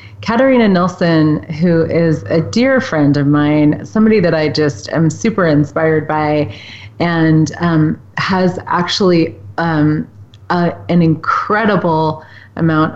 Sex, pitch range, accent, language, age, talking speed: female, 150-180 Hz, American, English, 30-49, 115 wpm